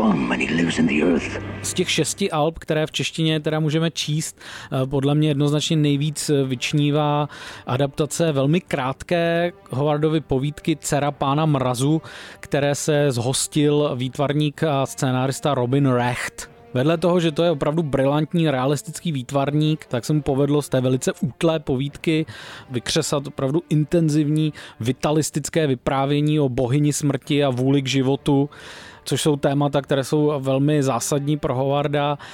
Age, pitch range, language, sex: 20-39, 130-155 Hz, Czech, male